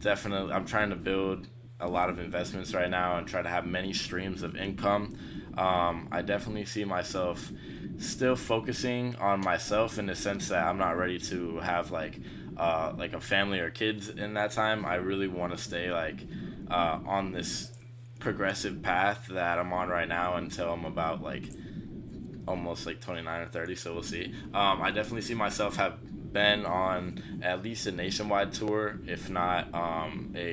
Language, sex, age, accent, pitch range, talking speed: English, male, 20-39, American, 90-105 Hz, 180 wpm